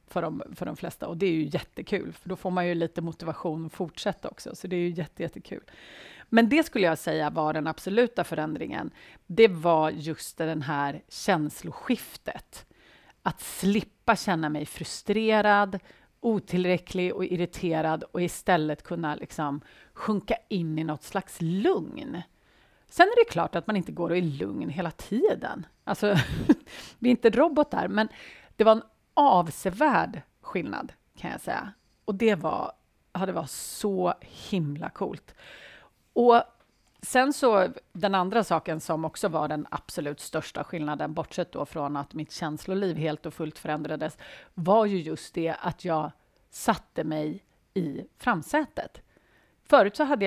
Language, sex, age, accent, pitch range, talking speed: Swedish, female, 30-49, native, 160-215 Hz, 155 wpm